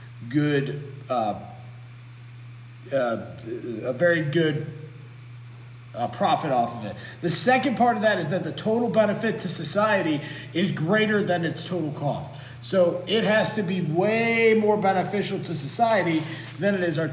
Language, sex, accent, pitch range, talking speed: English, male, American, 130-200 Hz, 150 wpm